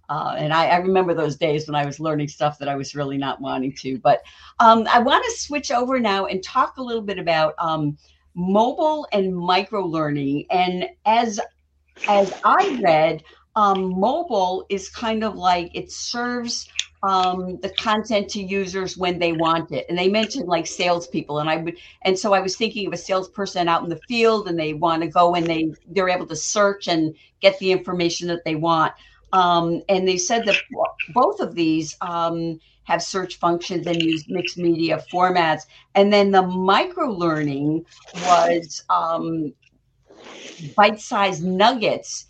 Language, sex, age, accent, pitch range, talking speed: English, female, 50-69, American, 165-200 Hz, 175 wpm